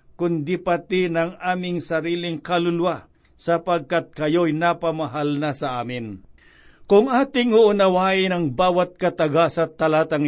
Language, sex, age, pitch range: Filipino, male, 50-69, 155-185 Hz